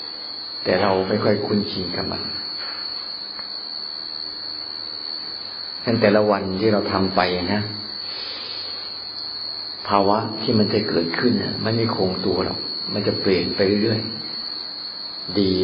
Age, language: 50-69, Thai